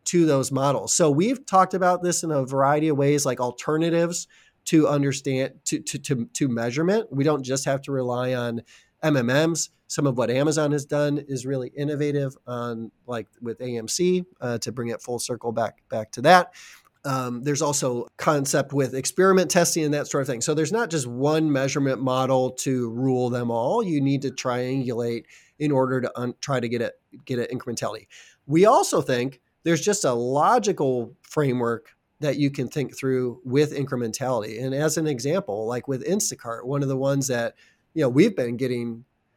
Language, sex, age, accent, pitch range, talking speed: English, male, 30-49, American, 125-150 Hz, 185 wpm